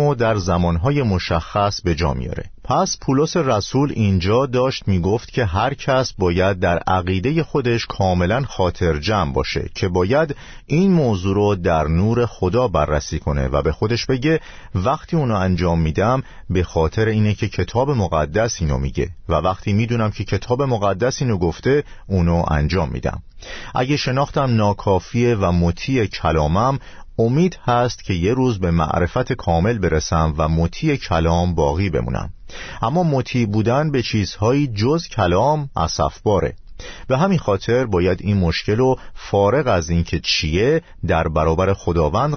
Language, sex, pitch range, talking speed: Persian, male, 85-125 Hz, 145 wpm